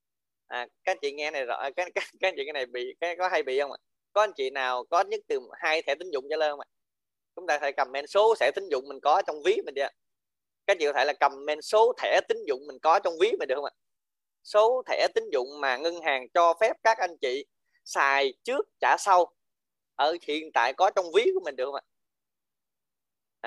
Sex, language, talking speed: male, Vietnamese, 250 wpm